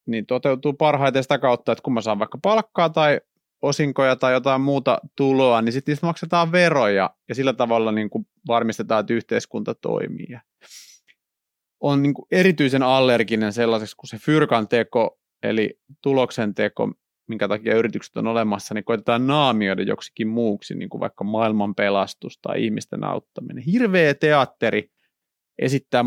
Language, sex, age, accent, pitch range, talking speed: Finnish, male, 30-49, native, 110-145 Hz, 140 wpm